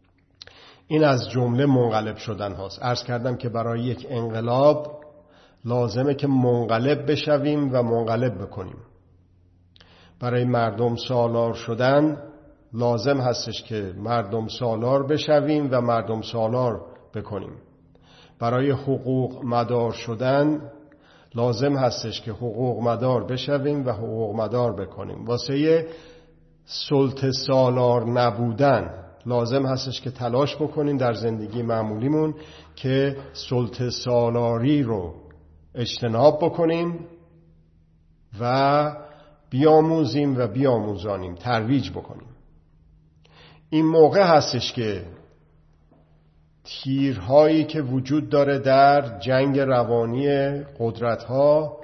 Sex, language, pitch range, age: male, Persian, 115-140 Hz, 50-69